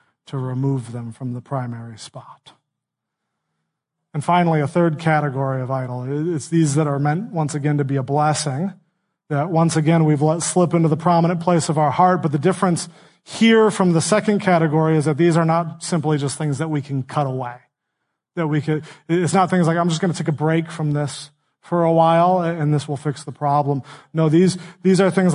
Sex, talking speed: male, 210 wpm